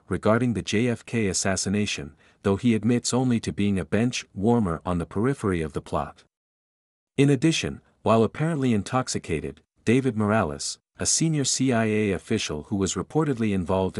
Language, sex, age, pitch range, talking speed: English, male, 50-69, 90-120 Hz, 140 wpm